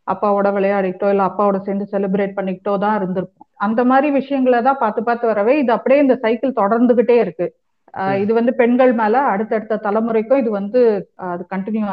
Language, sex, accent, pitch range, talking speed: Tamil, female, native, 190-235 Hz, 165 wpm